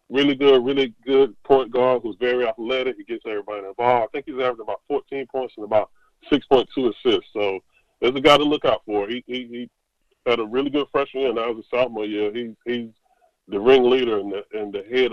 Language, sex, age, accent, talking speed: English, female, 20-39, American, 220 wpm